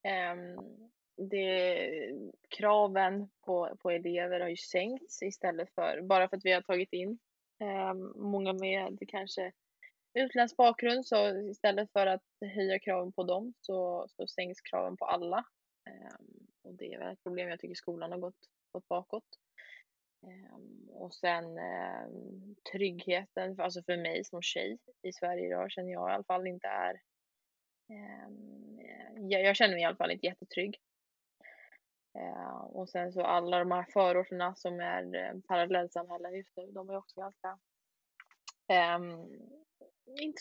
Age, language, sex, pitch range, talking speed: 20-39, Swedish, female, 180-205 Hz, 145 wpm